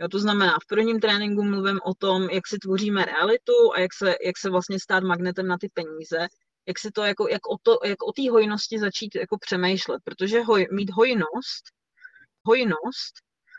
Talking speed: 180 wpm